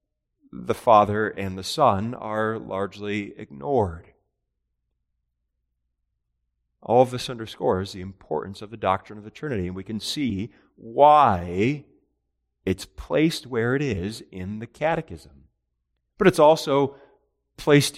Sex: male